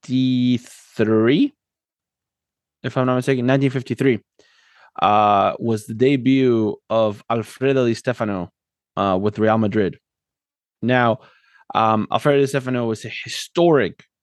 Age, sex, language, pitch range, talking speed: 20-39, male, English, 110-135 Hz, 105 wpm